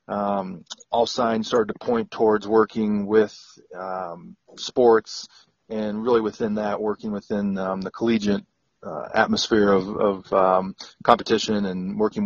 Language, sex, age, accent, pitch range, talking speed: English, male, 30-49, American, 100-115 Hz, 135 wpm